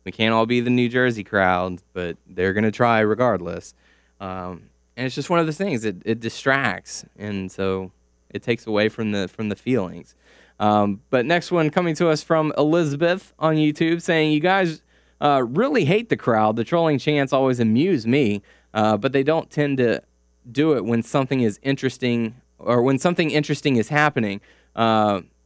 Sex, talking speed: male, 185 wpm